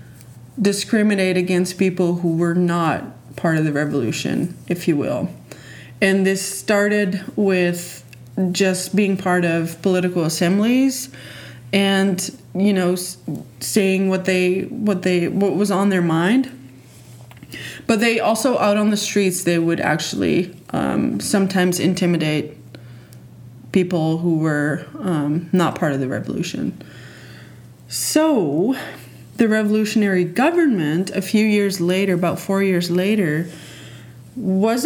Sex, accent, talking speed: female, American, 125 wpm